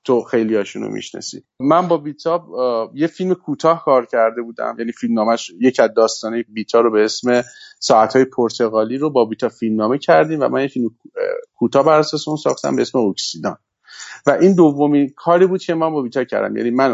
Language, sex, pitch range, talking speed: Persian, male, 115-150 Hz, 185 wpm